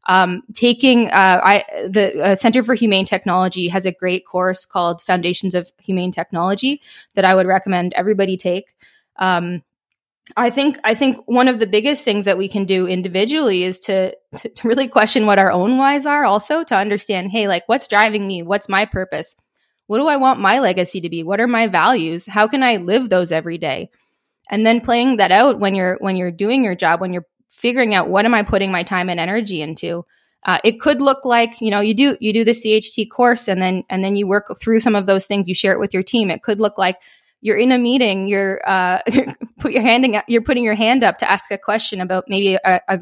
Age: 20-39